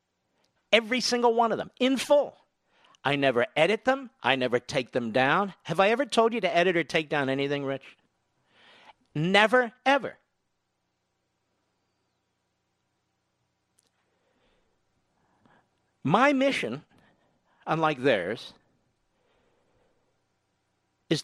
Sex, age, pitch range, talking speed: male, 50-69, 125-205 Hz, 100 wpm